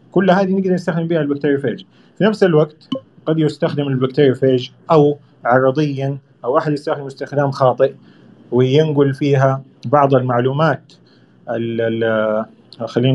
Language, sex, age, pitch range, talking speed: Arabic, male, 30-49, 130-155 Hz, 110 wpm